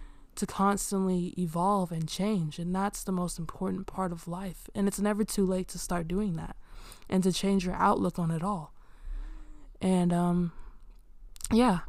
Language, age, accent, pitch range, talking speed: English, 20-39, American, 170-190 Hz, 165 wpm